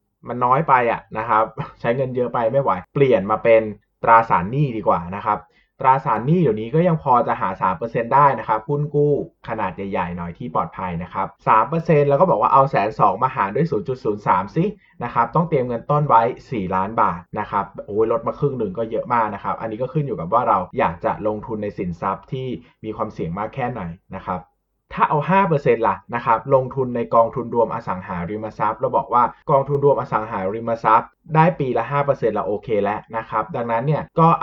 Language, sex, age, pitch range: Thai, male, 20-39, 105-145 Hz